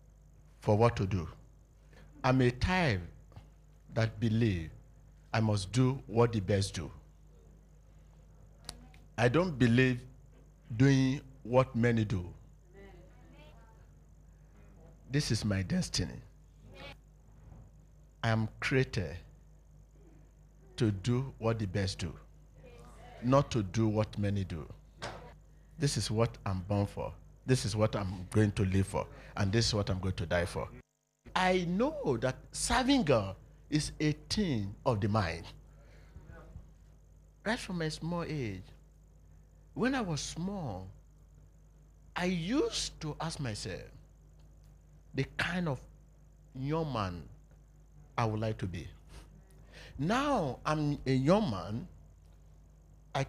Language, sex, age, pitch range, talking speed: English, male, 50-69, 95-140 Hz, 120 wpm